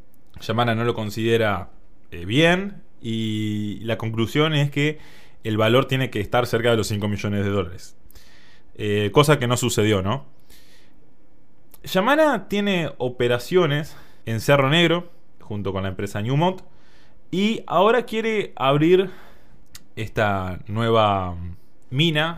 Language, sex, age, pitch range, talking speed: Spanish, male, 20-39, 105-150 Hz, 125 wpm